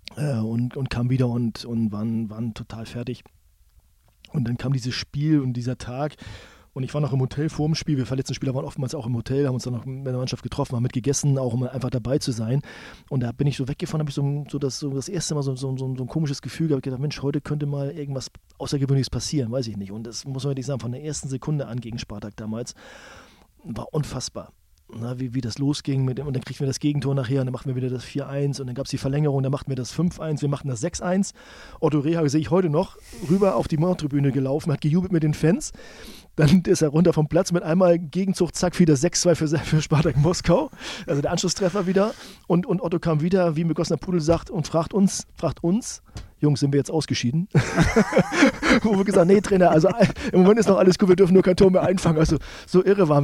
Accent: German